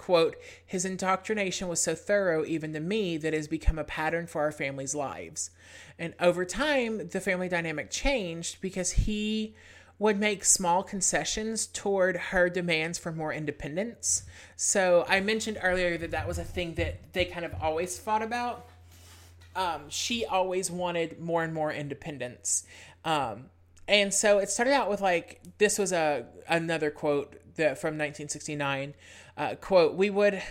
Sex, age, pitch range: male, 30-49, 150-200 Hz